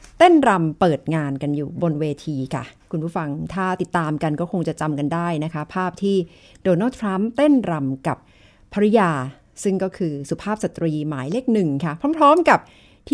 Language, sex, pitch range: Thai, female, 165-235 Hz